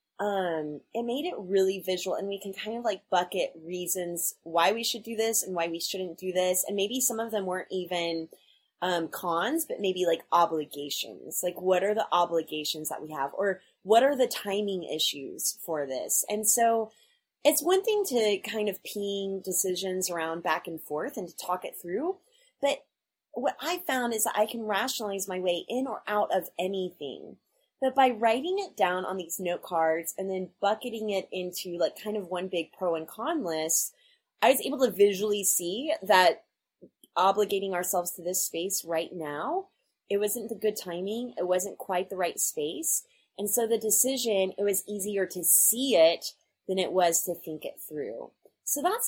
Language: English